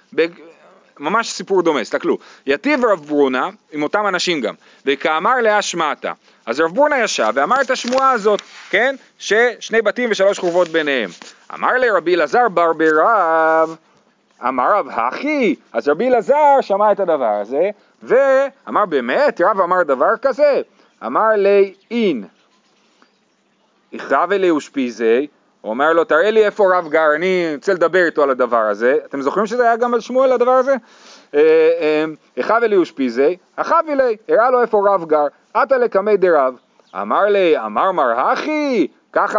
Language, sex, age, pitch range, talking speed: Hebrew, male, 30-49, 185-260 Hz, 150 wpm